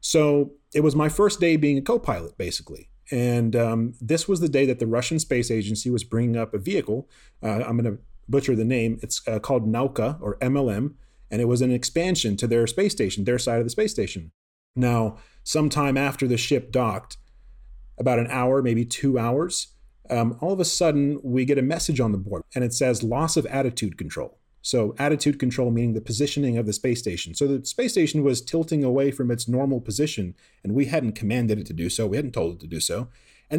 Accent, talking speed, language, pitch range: American, 220 wpm, English, 115-145 Hz